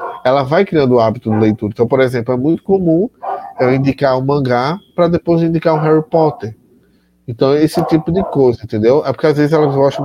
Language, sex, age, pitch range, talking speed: Portuguese, male, 20-39, 120-155 Hz, 220 wpm